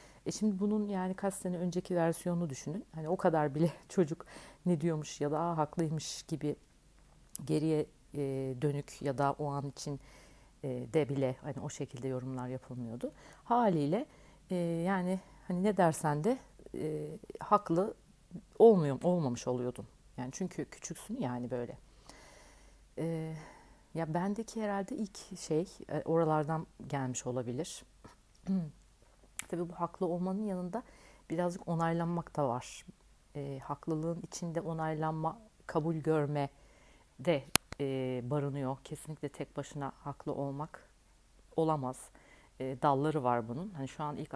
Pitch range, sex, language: 135-175 Hz, female, Turkish